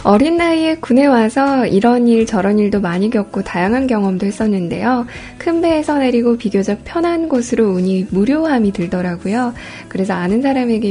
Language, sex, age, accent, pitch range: Korean, female, 10-29, native, 195-260 Hz